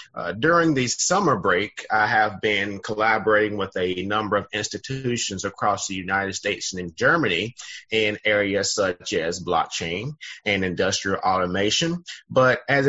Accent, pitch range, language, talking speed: American, 105-140 Hz, English, 145 wpm